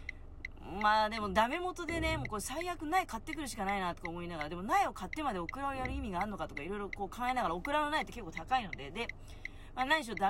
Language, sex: Japanese, female